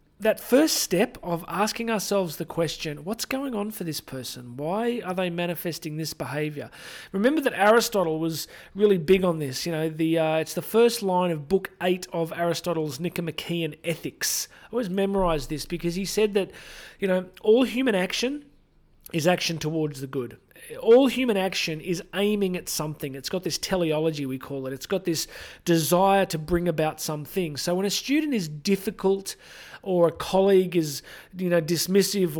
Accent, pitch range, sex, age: Australian, 160-195 Hz, male, 40-59